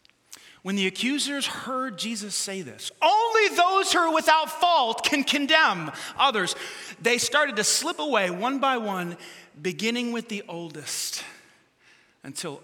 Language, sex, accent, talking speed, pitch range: English, male, American, 140 wpm, 180-290 Hz